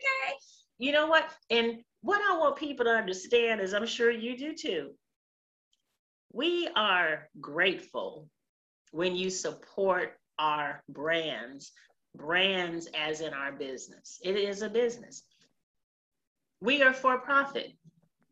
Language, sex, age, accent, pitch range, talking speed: English, female, 40-59, American, 185-275 Hz, 120 wpm